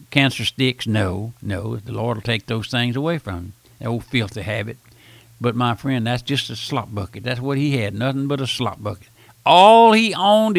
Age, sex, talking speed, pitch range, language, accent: 60-79, male, 210 wpm, 115-135 Hz, English, American